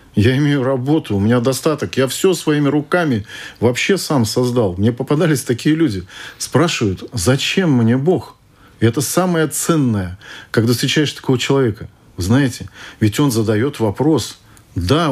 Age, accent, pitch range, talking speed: 40-59, native, 105-145 Hz, 140 wpm